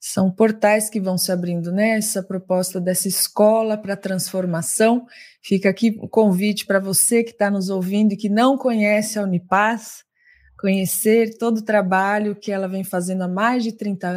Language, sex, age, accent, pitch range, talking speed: Portuguese, female, 20-39, Brazilian, 185-225 Hz, 175 wpm